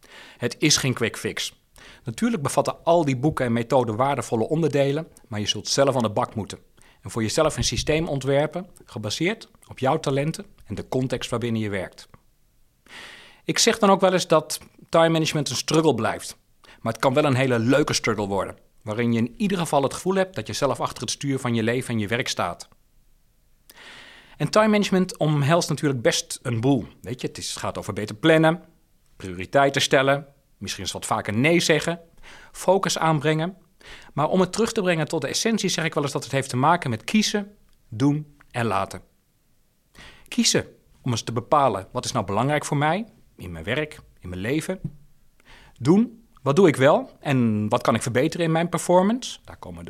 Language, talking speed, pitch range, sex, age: Dutch, 195 wpm, 120-165 Hz, male, 40-59